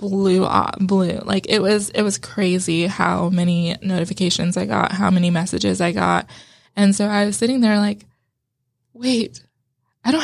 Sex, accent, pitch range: female, American, 175-215 Hz